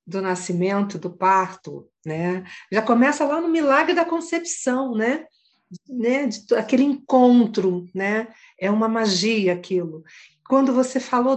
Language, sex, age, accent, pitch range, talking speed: Portuguese, female, 50-69, Brazilian, 185-245 Hz, 120 wpm